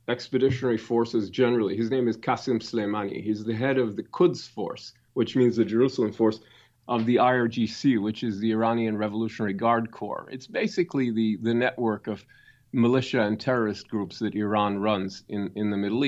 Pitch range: 115-145 Hz